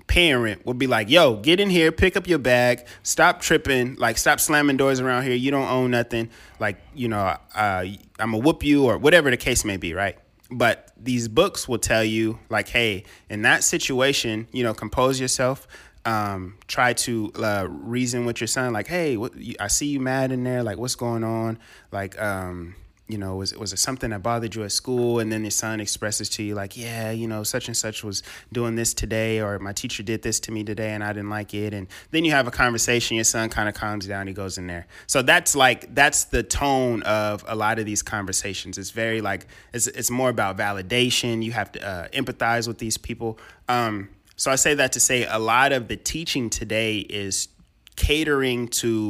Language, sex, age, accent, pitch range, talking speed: English, male, 20-39, American, 105-125 Hz, 220 wpm